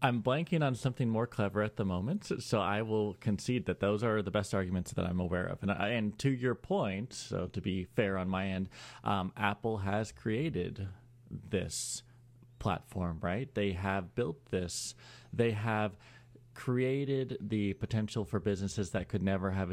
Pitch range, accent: 95-120 Hz, American